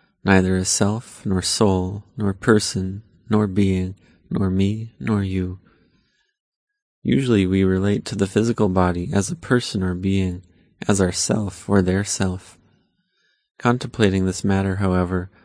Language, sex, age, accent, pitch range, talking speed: English, male, 30-49, American, 95-105 Hz, 130 wpm